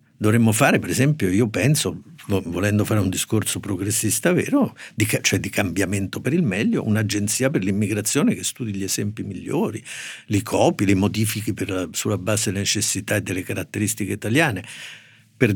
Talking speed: 150 wpm